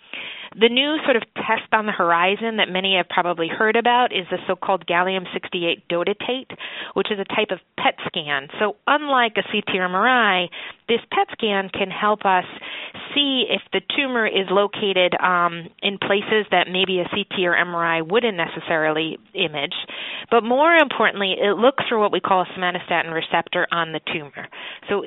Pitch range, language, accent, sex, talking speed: 175-220 Hz, English, American, female, 175 wpm